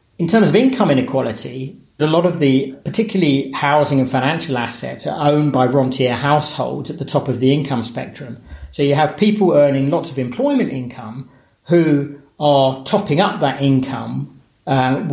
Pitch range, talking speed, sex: 125-150 Hz, 165 wpm, male